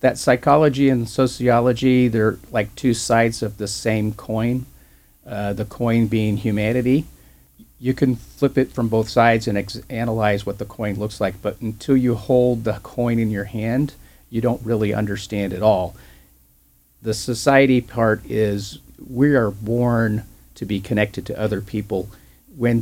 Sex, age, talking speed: male, 40-59, 160 wpm